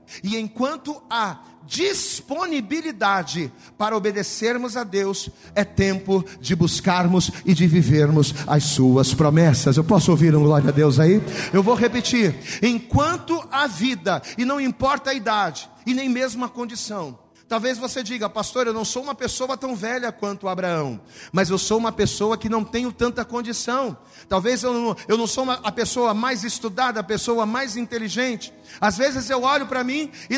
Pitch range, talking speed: 195-265 Hz, 170 wpm